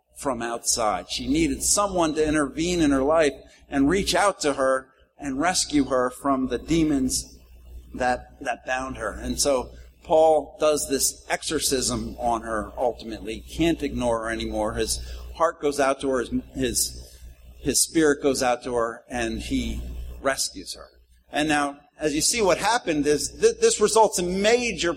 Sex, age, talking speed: male, 50-69, 165 wpm